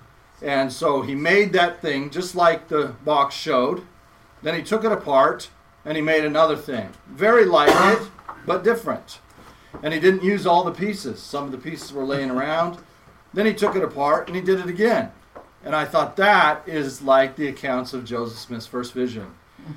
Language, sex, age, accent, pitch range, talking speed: English, male, 40-59, American, 140-180 Hz, 190 wpm